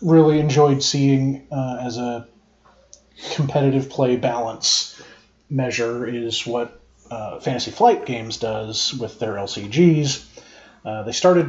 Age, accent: 30-49, American